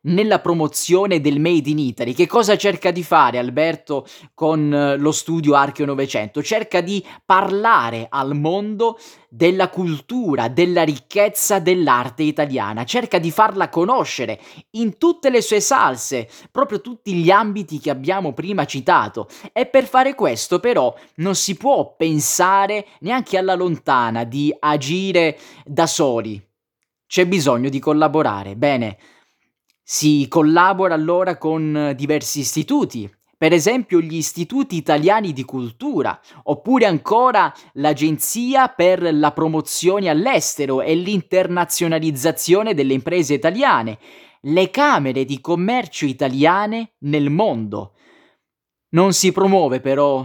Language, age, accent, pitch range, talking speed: Italian, 20-39, native, 145-195 Hz, 120 wpm